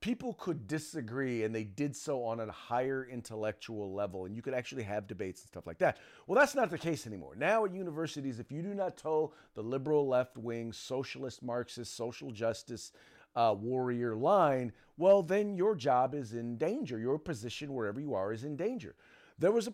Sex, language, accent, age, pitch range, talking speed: male, English, American, 40-59, 110-150 Hz, 195 wpm